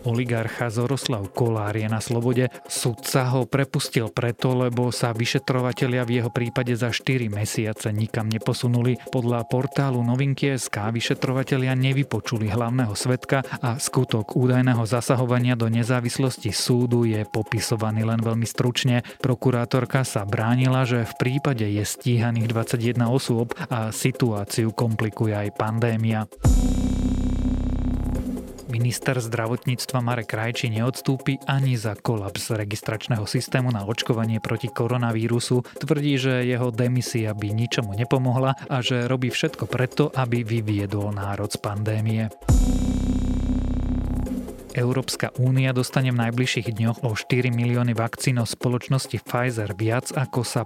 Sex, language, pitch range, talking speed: male, Slovak, 110-130 Hz, 120 wpm